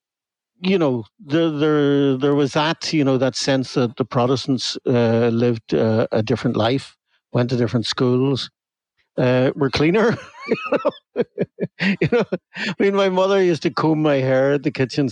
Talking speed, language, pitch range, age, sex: 165 wpm, English, 120-155 Hz, 60-79, male